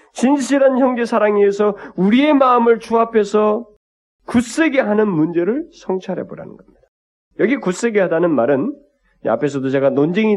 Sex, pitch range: male, 145-230 Hz